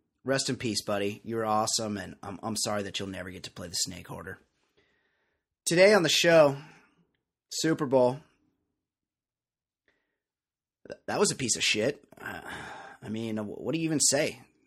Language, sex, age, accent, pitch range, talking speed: English, male, 30-49, American, 110-150 Hz, 165 wpm